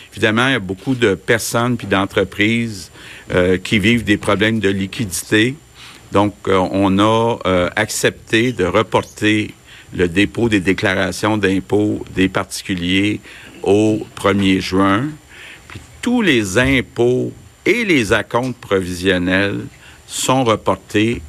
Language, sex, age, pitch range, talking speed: French, male, 50-69, 95-110 Hz, 125 wpm